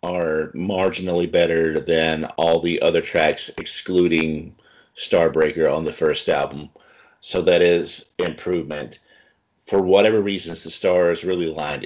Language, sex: English, male